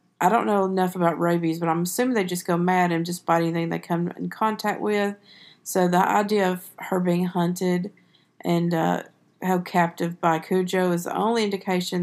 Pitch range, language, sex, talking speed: 165-185 Hz, English, female, 195 wpm